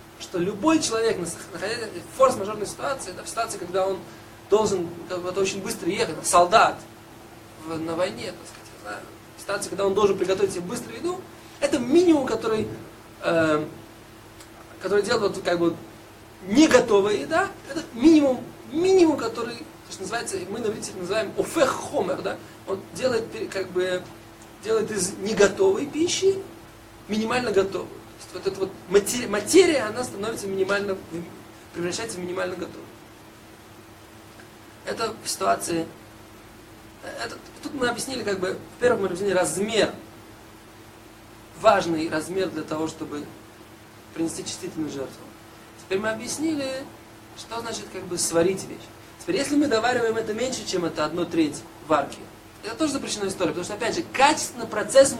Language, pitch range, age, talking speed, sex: Russian, 155-230 Hz, 20-39, 135 wpm, male